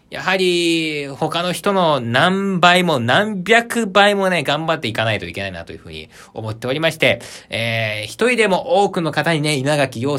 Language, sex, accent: Japanese, male, native